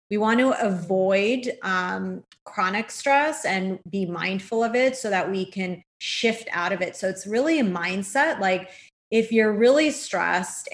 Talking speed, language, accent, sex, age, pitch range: 170 wpm, English, American, female, 30-49, 185-225 Hz